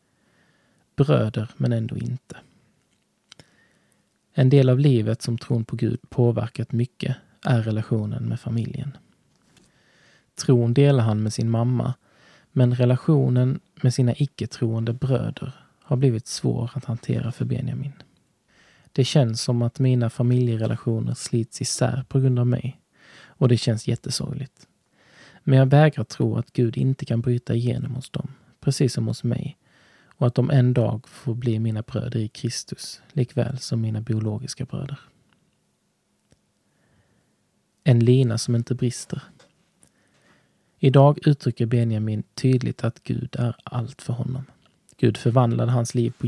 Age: 20-39